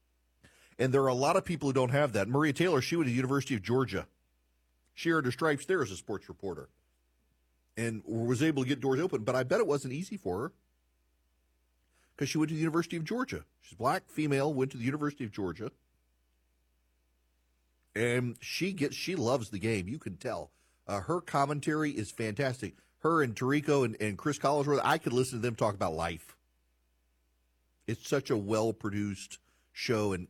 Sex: male